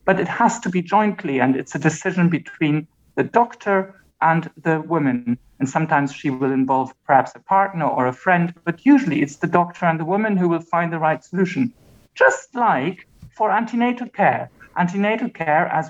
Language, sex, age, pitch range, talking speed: English, male, 50-69, 155-195 Hz, 185 wpm